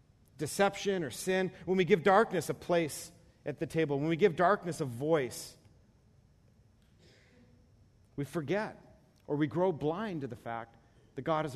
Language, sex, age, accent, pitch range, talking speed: English, male, 40-59, American, 125-190 Hz, 155 wpm